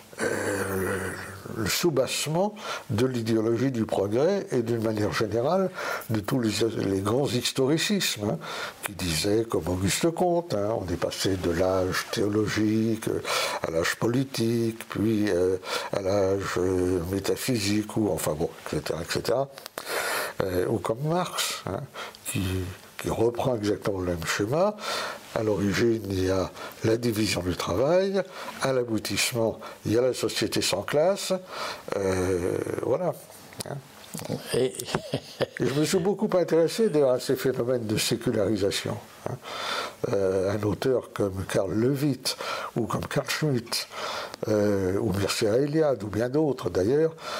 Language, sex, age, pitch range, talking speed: French, male, 60-79, 95-135 Hz, 135 wpm